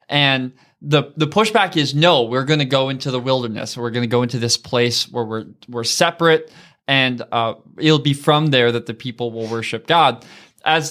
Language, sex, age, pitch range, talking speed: English, male, 20-39, 120-155 Hz, 205 wpm